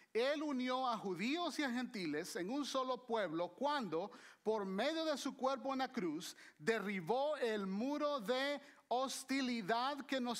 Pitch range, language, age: 215-270 Hz, Spanish, 40-59